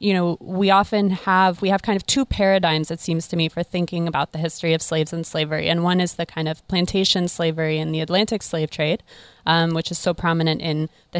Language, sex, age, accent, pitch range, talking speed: English, female, 20-39, American, 165-195 Hz, 235 wpm